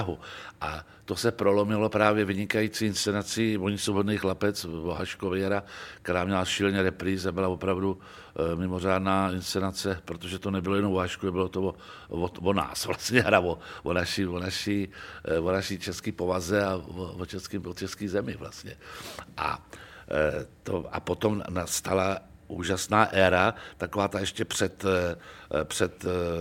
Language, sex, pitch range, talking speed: Czech, male, 90-105 Hz, 135 wpm